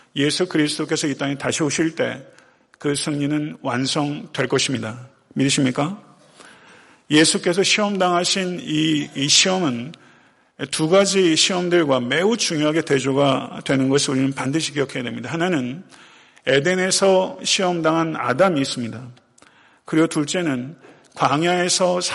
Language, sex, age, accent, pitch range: Korean, male, 40-59, native, 140-180 Hz